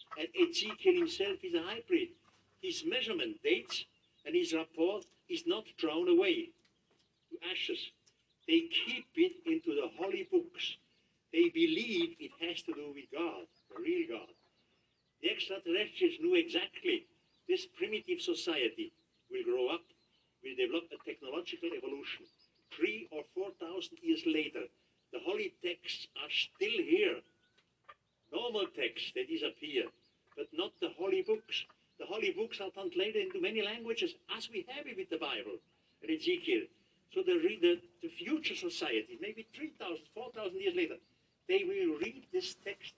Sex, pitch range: male, 315-375 Hz